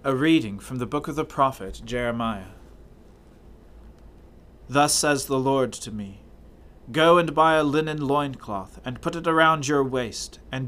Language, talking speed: English, 155 wpm